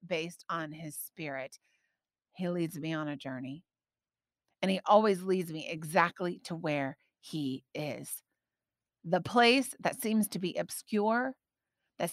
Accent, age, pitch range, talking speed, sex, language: American, 30-49, 175-225 Hz, 140 wpm, female, English